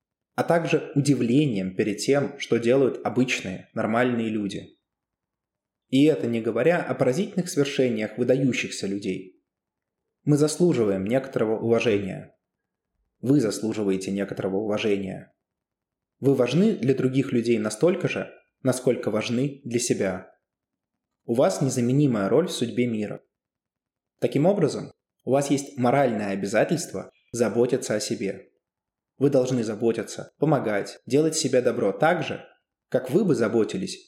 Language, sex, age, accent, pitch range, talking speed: Russian, male, 20-39, native, 105-135 Hz, 120 wpm